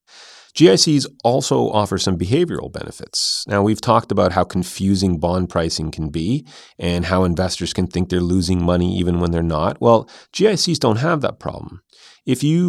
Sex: male